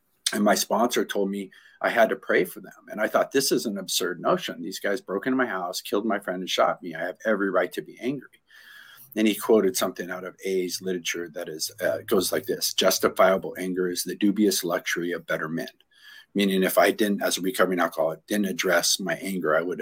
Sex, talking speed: male, 225 wpm